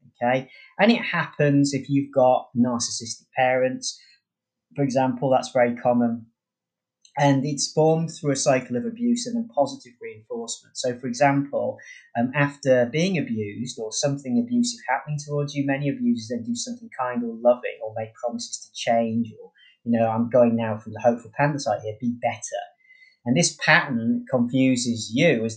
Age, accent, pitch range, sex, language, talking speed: 30-49, British, 120-155 Hz, male, English, 170 wpm